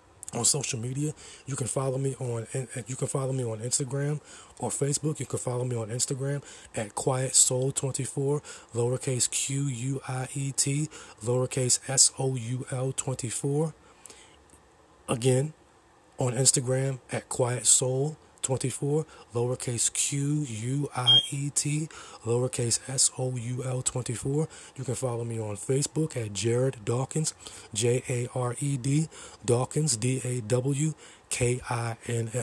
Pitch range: 120-135 Hz